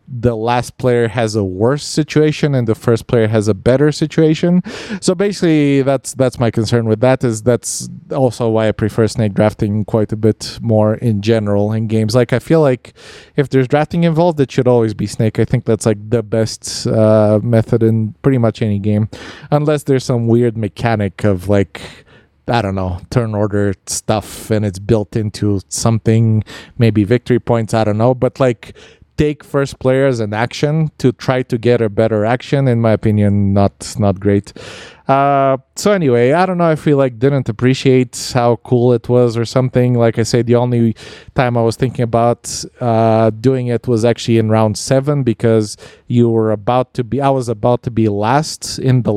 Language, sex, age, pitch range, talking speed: English, male, 20-39, 110-135 Hz, 195 wpm